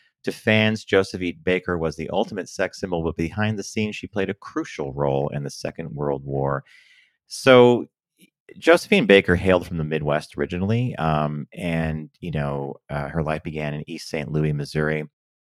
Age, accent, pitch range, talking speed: 40-59, American, 75-105 Hz, 170 wpm